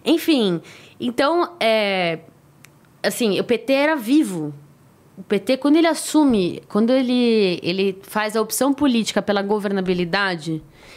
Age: 20-39